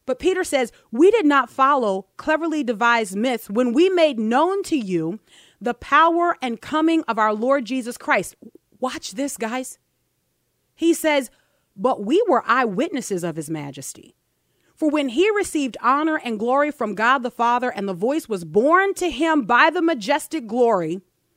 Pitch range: 205-295 Hz